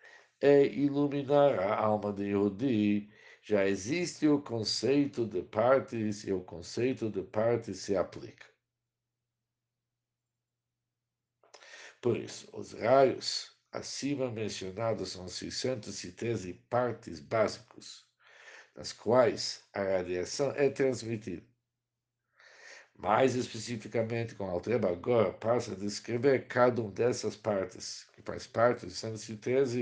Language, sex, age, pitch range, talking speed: Portuguese, male, 60-79, 110-125 Hz, 105 wpm